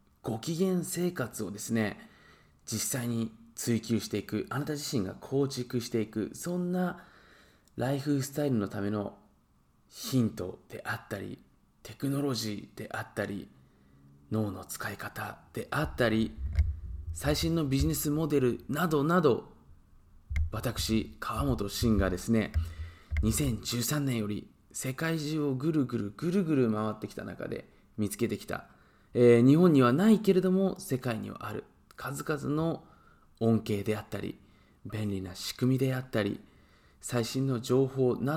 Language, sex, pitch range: Japanese, male, 105-155 Hz